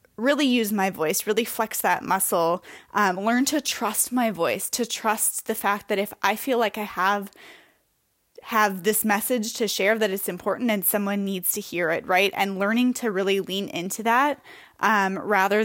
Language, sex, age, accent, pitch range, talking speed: English, female, 20-39, American, 190-225 Hz, 190 wpm